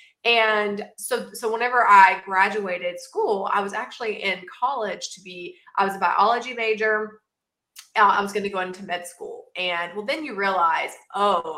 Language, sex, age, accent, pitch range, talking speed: English, female, 20-39, American, 190-295 Hz, 175 wpm